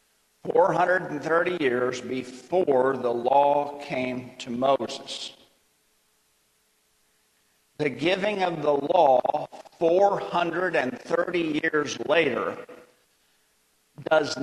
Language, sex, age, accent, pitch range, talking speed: English, male, 50-69, American, 130-170 Hz, 70 wpm